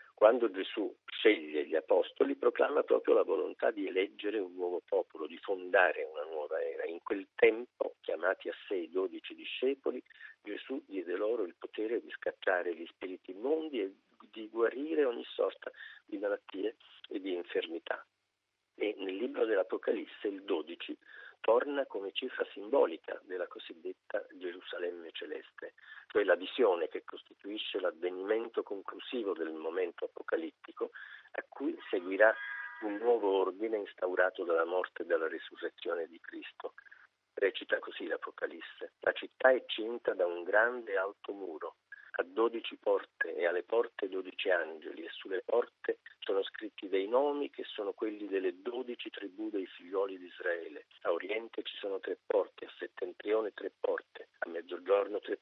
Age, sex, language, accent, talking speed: 50-69, male, Italian, native, 145 wpm